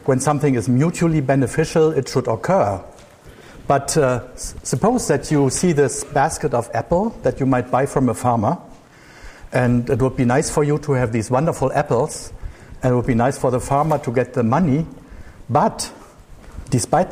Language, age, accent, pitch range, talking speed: English, 60-79, German, 125-150 Hz, 180 wpm